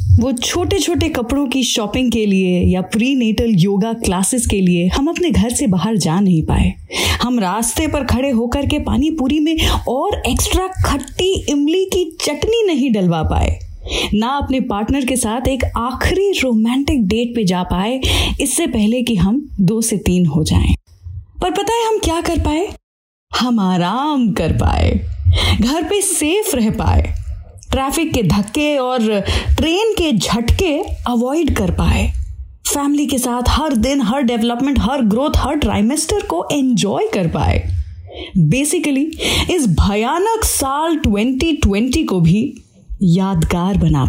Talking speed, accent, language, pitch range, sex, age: 150 wpm, native, Hindi, 185-295 Hz, female, 20-39